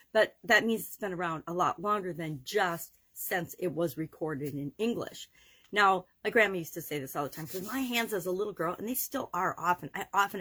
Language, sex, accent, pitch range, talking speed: English, female, American, 160-205 Hz, 235 wpm